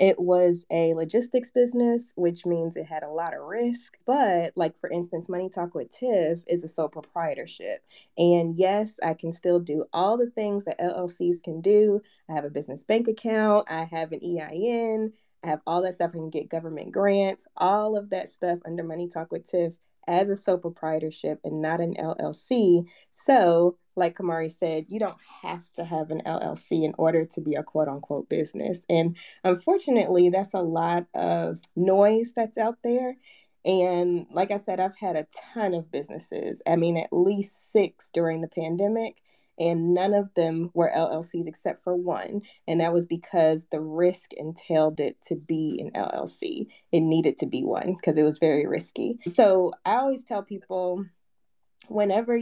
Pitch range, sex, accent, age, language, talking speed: 165-200 Hz, female, American, 20-39, English, 180 wpm